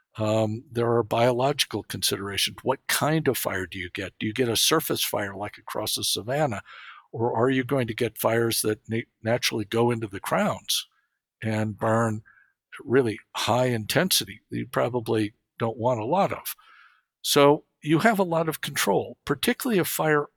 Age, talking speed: 60-79, 175 wpm